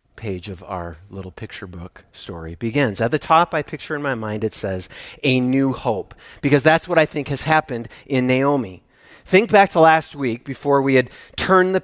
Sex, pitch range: male, 140-200 Hz